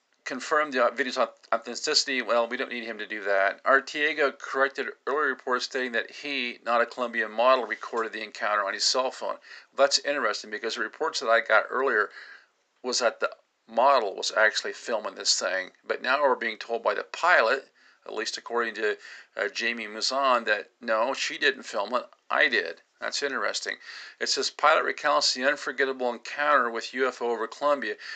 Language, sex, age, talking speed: English, male, 50-69, 180 wpm